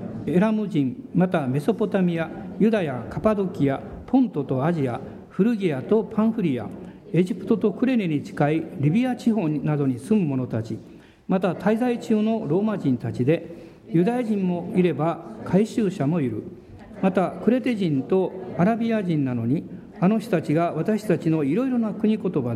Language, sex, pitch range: Japanese, male, 155-220 Hz